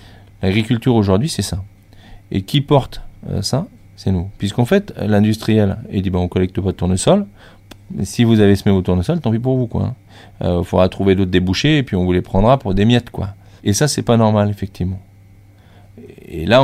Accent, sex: French, male